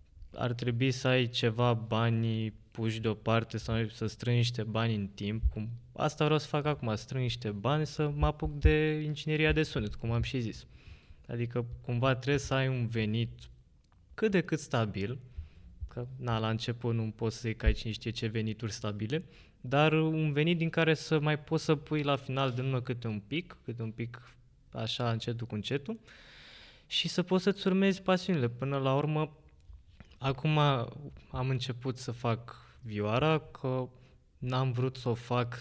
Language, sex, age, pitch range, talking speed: Romanian, male, 20-39, 110-140 Hz, 170 wpm